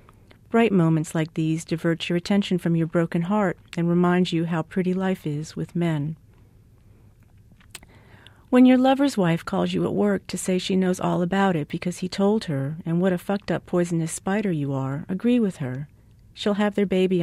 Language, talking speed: English, 190 wpm